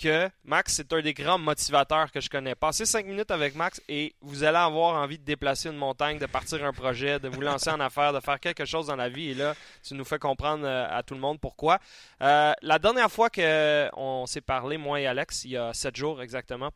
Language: French